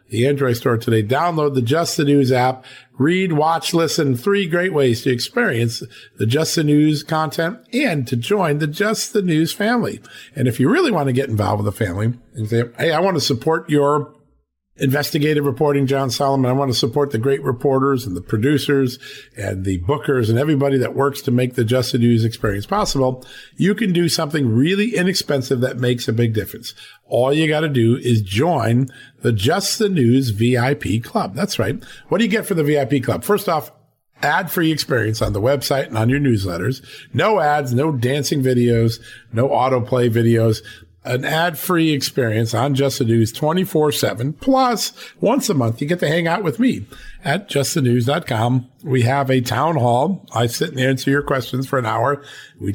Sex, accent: male, American